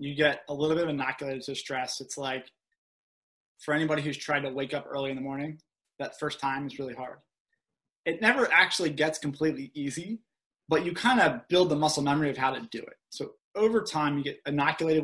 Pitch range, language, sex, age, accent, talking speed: 140-165 Hz, English, male, 20-39, American, 210 wpm